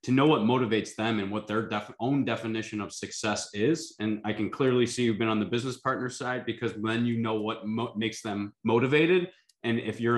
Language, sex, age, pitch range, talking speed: English, male, 20-39, 110-125 Hz, 210 wpm